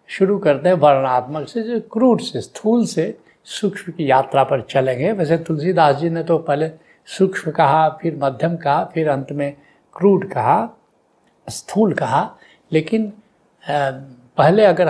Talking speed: 145 wpm